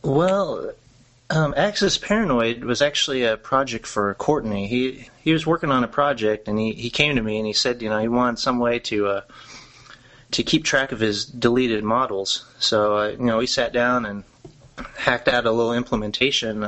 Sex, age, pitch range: male, 30-49, 105-125 Hz